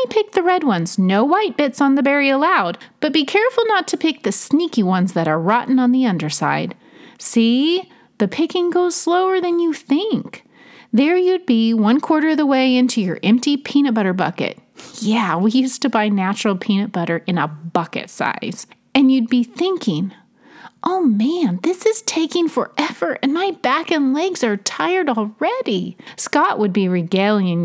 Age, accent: 30-49, American